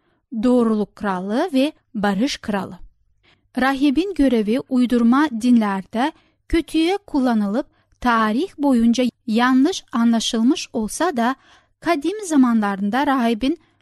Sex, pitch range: female, 220-280 Hz